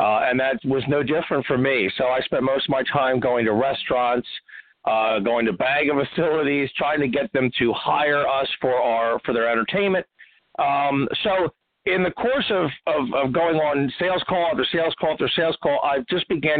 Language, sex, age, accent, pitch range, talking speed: English, male, 50-69, American, 125-165 Hz, 205 wpm